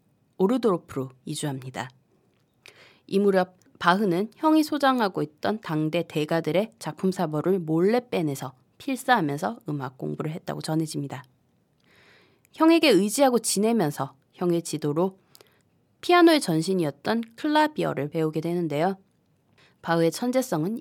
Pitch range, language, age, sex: 155-225 Hz, Korean, 20-39, female